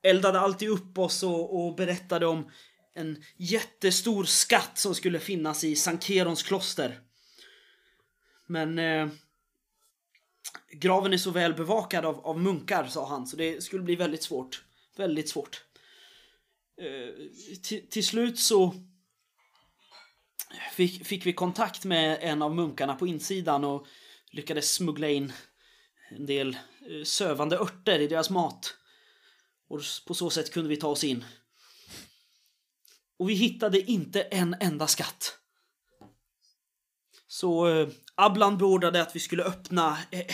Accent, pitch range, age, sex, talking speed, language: native, 155-195 Hz, 20-39, male, 130 wpm, Swedish